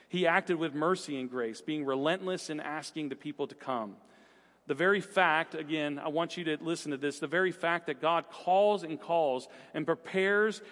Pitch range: 155-190 Hz